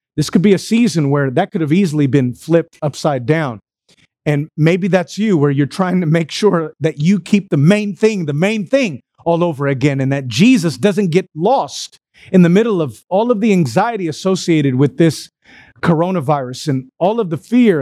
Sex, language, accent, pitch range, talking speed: male, English, American, 150-215 Hz, 200 wpm